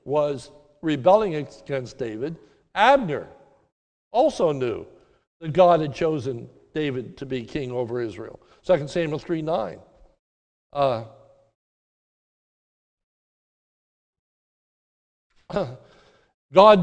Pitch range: 145-200 Hz